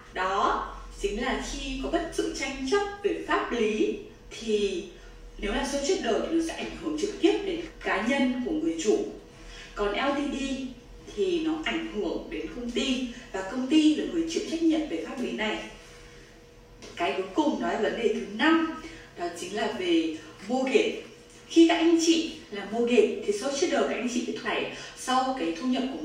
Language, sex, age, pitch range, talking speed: English, female, 20-39, 230-335 Hz, 200 wpm